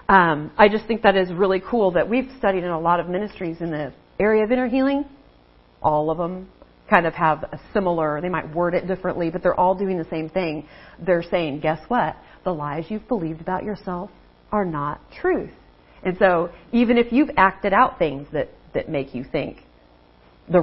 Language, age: English, 40-59